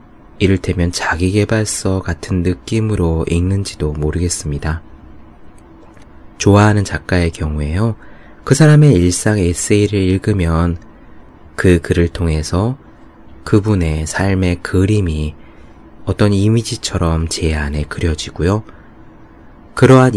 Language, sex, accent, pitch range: Korean, male, native, 80-105 Hz